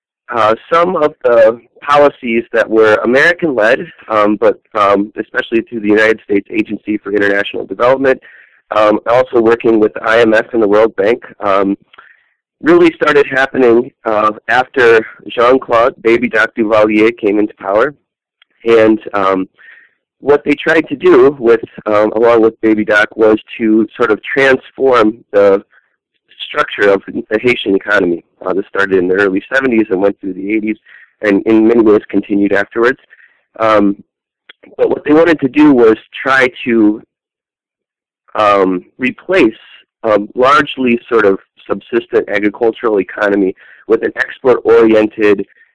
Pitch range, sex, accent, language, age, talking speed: 105-130 Hz, male, American, English, 30-49, 140 wpm